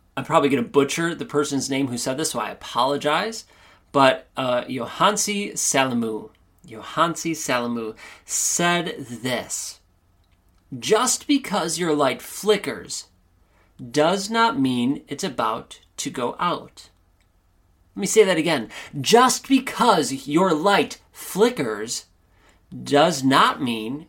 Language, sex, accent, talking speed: English, male, American, 115 wpm